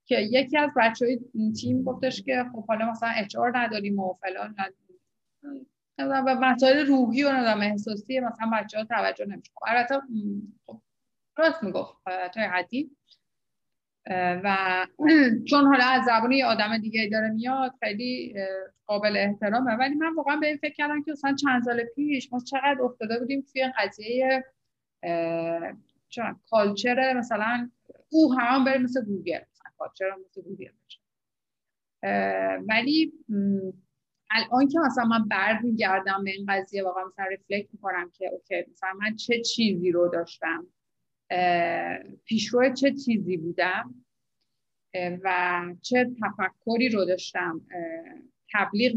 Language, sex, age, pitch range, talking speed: Persian, female, 30-49, 190-260 Hz, 130 wpm